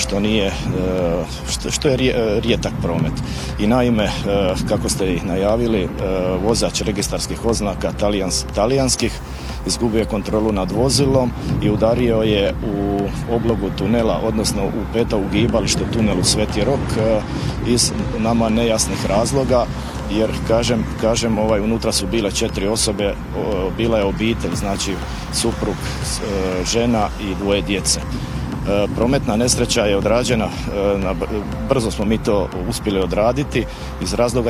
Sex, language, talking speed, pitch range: male, Croatian, 120 wpm, 95-115 Hz